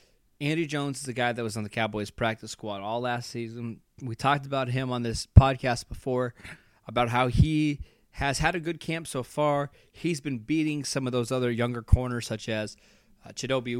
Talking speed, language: 200 wpm, English